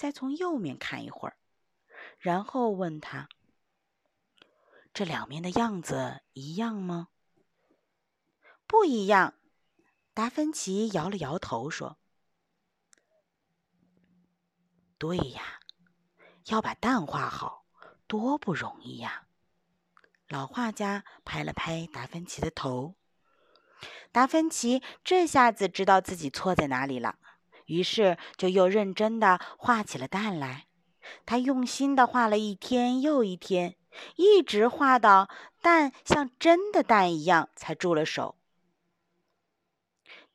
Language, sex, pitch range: Chinese, female, 175-255 Hz